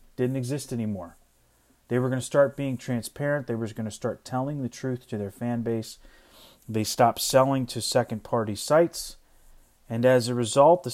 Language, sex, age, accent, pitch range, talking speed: English, male, 30-49, American, 115-145 Hz, 180 wpm